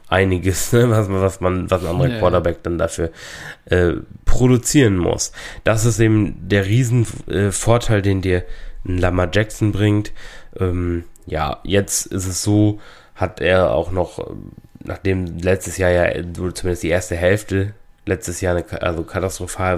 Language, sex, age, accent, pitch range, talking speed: German, male, 20-39, German, 85-100 Hz, 145 wpm